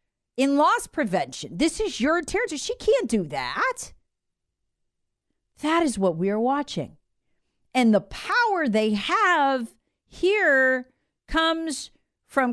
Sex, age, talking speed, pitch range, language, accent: female, 40-59, 120 wpm, 185-265 Hz, English, American